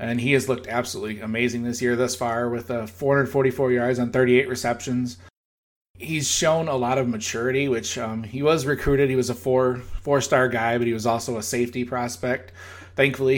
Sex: male